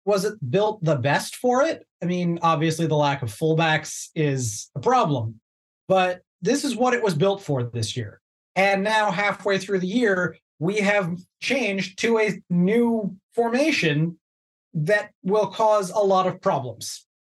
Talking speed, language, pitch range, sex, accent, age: 165 wpm, English, 140-180 Hz, male, American, 30-49